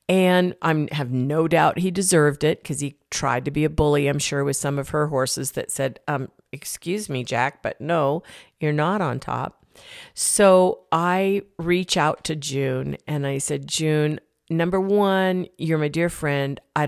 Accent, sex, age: American, female, 50-69